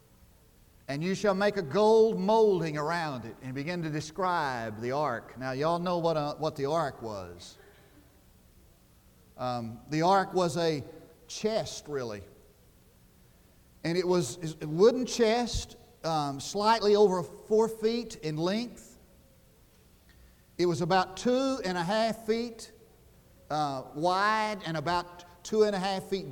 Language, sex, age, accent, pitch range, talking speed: English, male, 50-69, American, 140-210 Hz, 140 wpm